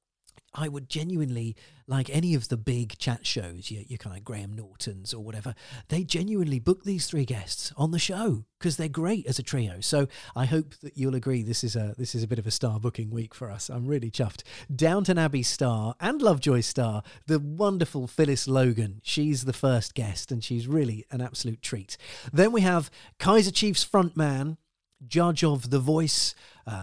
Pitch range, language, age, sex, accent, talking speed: 115-145 Hz, English, 40-59, male, British, 190 wpm